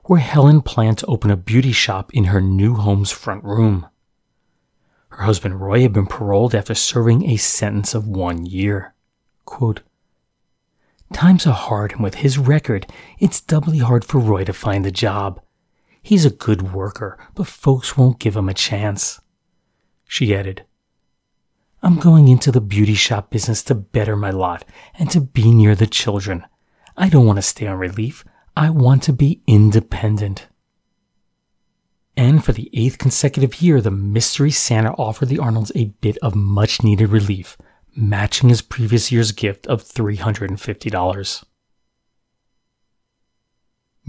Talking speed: 150 wpm